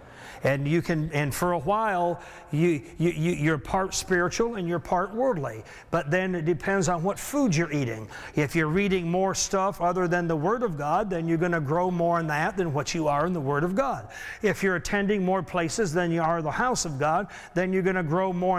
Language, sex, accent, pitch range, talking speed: English, male, American, 165-205 Hz, 230 wpm